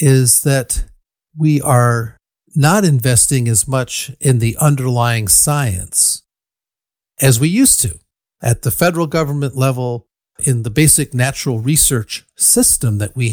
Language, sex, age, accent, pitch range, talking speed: English, male, 50-69, American, 120-155 Hz, 130 wpm